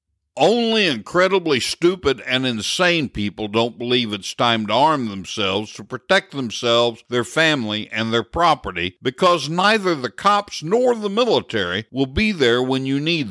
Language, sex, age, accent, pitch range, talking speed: English, male, 60-79, American, 110-160 Hz, 155 wpm